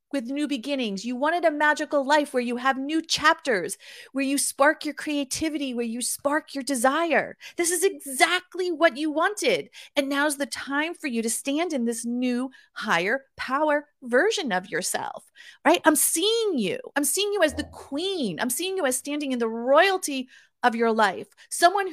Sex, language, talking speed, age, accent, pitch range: female, English, 185 wpm, 40-59, American, 235-310 Hz